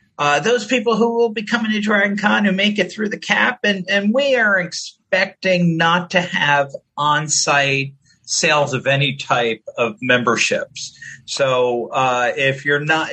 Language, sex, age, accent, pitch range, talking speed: English, male, 50-69, American, 165-200 Hz, 165 wpm